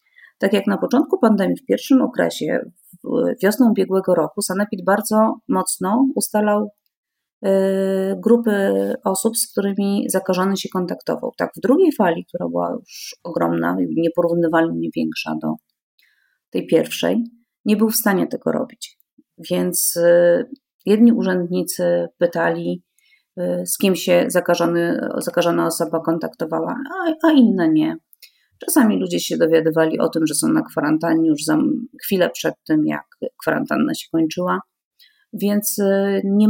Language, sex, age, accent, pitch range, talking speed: Polish, female, 30-49, native, 175-235 Hz, 125 wpm